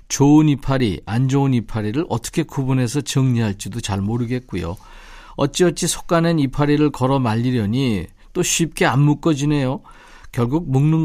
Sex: male